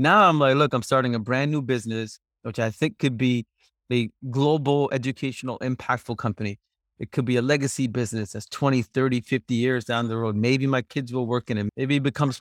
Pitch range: 120-150 Hz